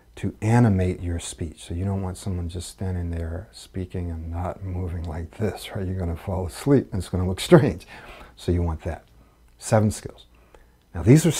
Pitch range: 85-115 Hz